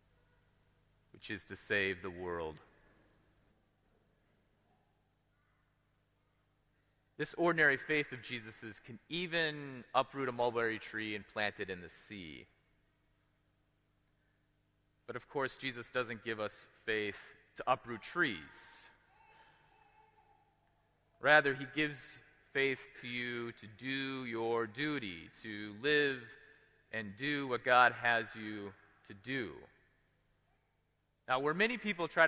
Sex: male